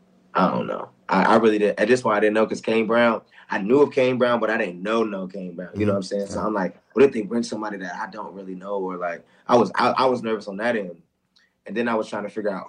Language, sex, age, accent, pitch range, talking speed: English, male, 20-39, American, 95-115 Hz, 305 wpm